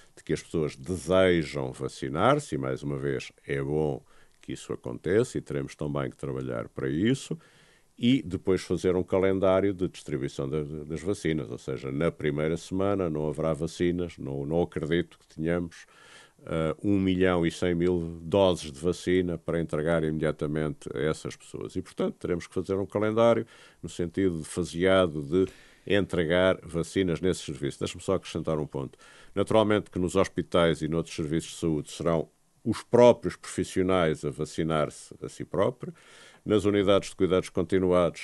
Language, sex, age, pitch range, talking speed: Portuguese, male, 50-69, 75-95 Hz, 160 wpm